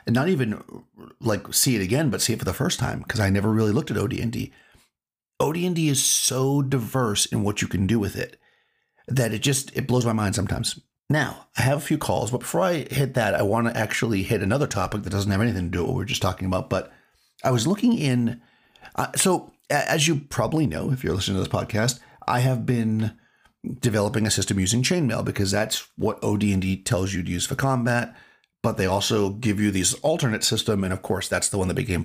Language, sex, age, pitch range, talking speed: English, male, 40-59, 100-130 Hz, 225 wpm